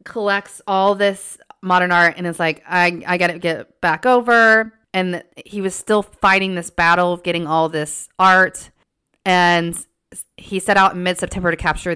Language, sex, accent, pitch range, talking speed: English, female, American, 155-180 Hz, 170 wpm